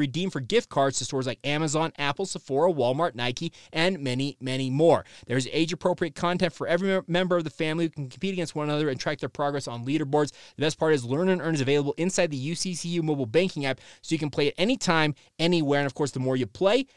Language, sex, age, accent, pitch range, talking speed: English, male, 30-49, American, 140-180 Hz, 235 wpm